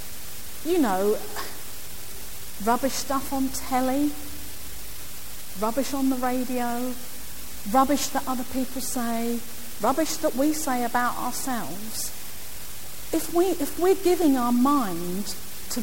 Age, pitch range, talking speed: 50-69, 190-265 Hz, 110 wpm